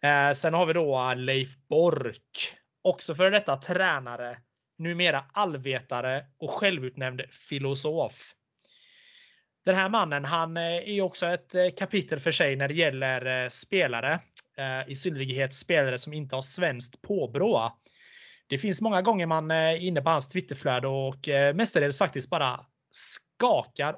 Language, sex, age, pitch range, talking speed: Swedish, male, 20-39, 130-170 Hz, 130 wpm